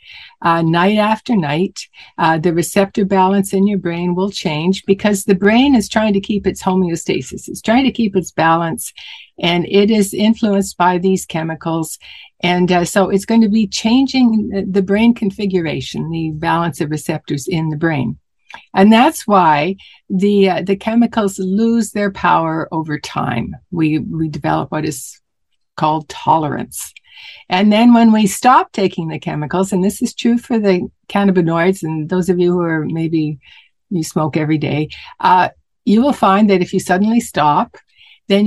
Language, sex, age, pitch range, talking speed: English, female, 60-79, 170-215 Hz, 170 wpm